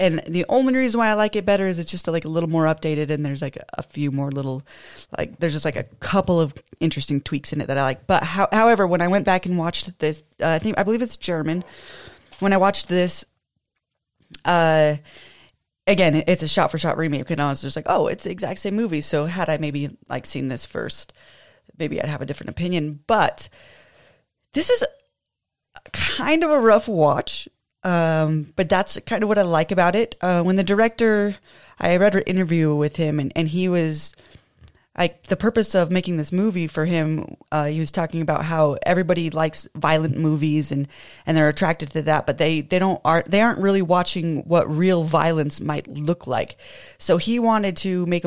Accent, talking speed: American, 215 wpm